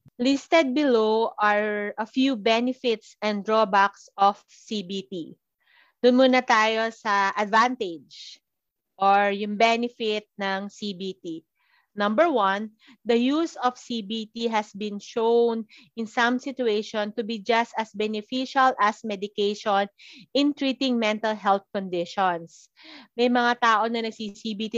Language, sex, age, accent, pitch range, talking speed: Filipino, female, 30-49, native, 205-255 Hz, 120 wpm